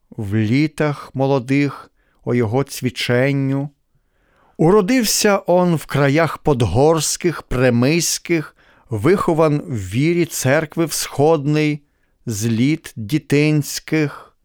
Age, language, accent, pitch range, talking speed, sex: 40-59, Ukrainian, native, 130-165 Hz, 85 wpm, male